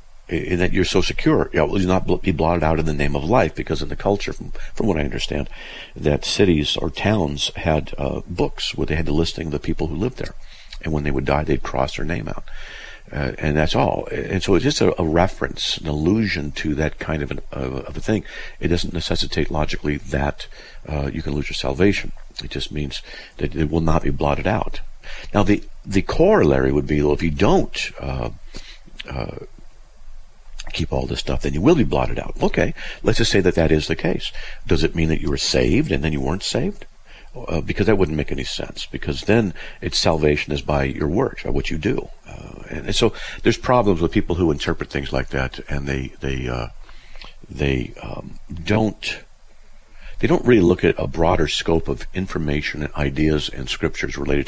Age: 50-69